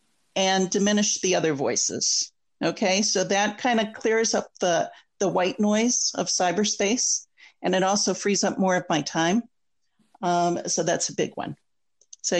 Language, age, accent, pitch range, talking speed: English, 50-69, American, 180-220 Hz, 165 wpm